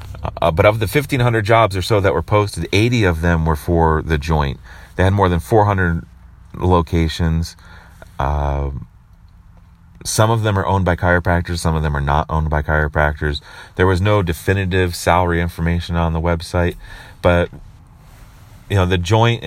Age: 30-49